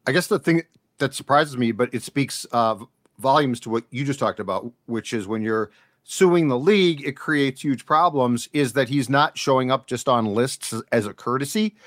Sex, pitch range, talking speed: male, 120-150 Hz, 205 wpm